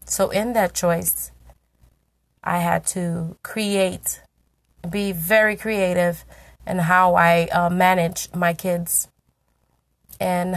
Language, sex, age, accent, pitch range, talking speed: English, female, 30-49, American, 165-190 Hz, 110 wpm